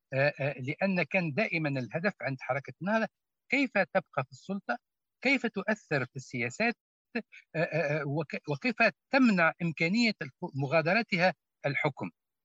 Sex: male